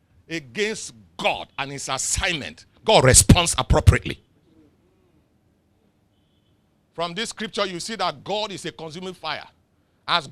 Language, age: English, 50-69